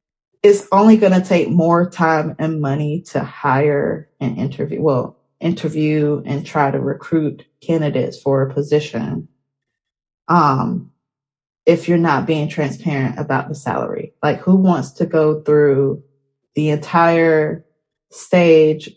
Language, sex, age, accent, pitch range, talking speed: English, female, 20-39, American, 150-185 Hz, 130 wpm